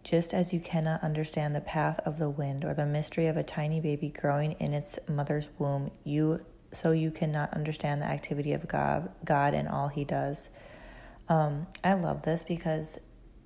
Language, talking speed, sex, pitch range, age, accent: English, 185 wpm, female, 145-165 Hz, 30-49, American